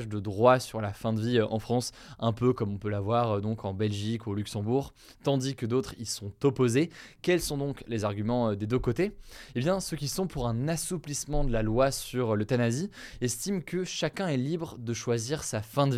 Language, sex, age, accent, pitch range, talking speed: French, male, 20-39, French, 115-145 Hz, 220 wpm